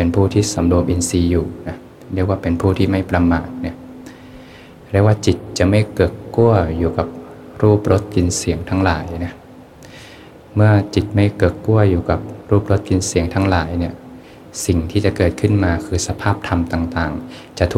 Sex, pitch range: male, 85-100 Hz